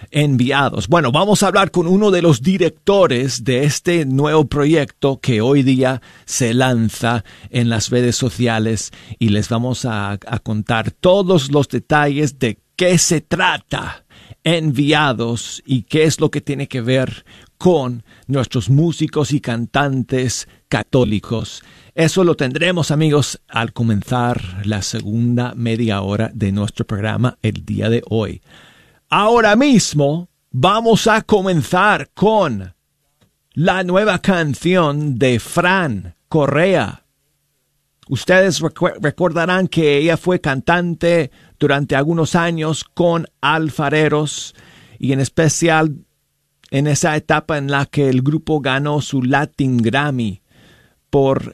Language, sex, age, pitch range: Spanish, male, 50-69, 120-155 Hz